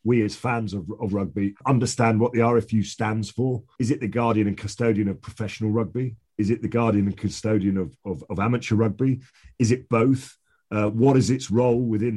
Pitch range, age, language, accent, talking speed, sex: 100-120 Hz, 40-59, English, British, 200 wpm, male